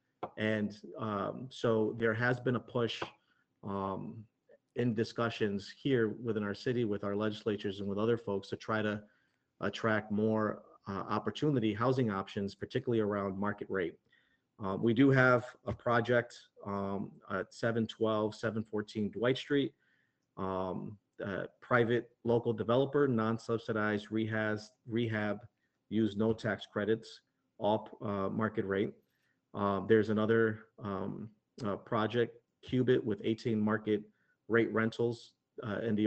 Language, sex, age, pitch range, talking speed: English, male, 40-59, 105-120 Hz, 130 wpm